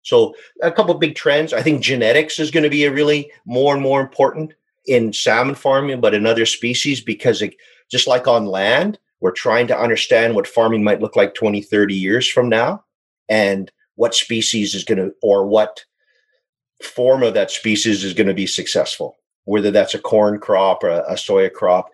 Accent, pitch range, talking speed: American, 105-155 Hz, 195 wpm